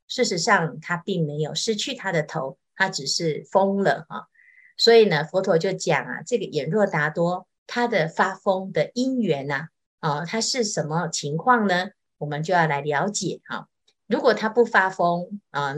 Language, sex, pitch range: Chinese, female, 155-215 Hz